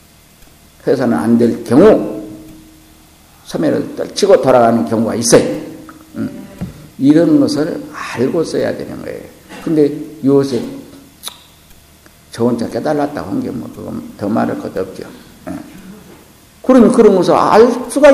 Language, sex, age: Korean, male, 50-69